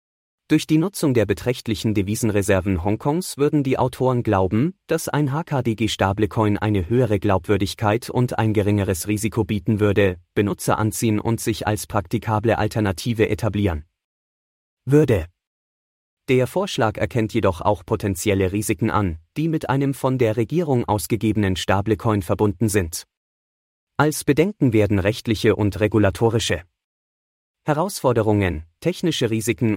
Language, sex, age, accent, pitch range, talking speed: English, male, 30-49, German, 100-125 Hz, 120 wpm